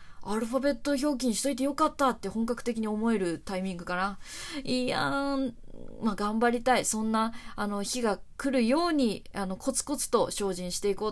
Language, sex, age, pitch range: Japanese, female, 20-39, 205-290 Hz